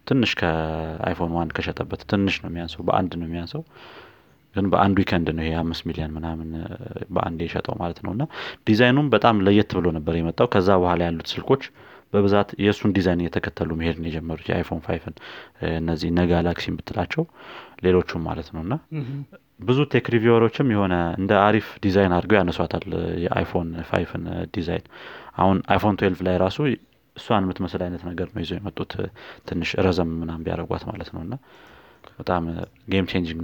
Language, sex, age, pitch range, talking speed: Amharic, male, 30-49, 85-100 Hz, 130 wpm